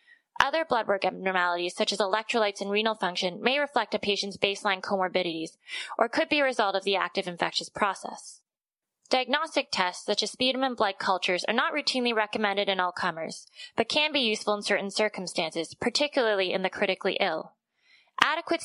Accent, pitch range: American, 190-245 Hz